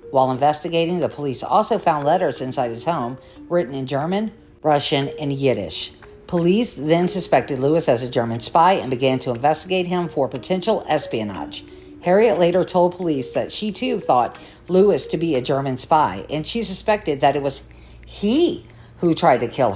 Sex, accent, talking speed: female, American, 175 wpm